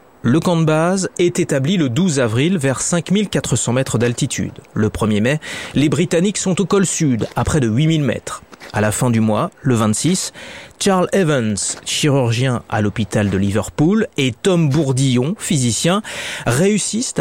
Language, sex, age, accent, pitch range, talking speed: French, male, 30-49, French, 120-180 Hz, 160 wpm